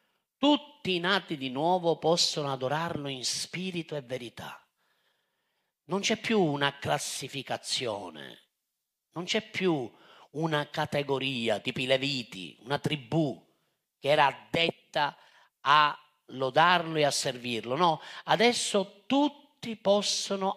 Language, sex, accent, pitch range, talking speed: Italian, male, native, 140-220 Hz, 110 wpm